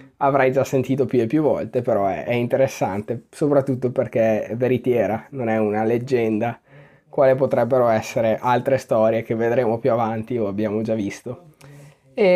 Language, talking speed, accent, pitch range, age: Italian, 160 wpm, native, 115-140 Hz, 20-39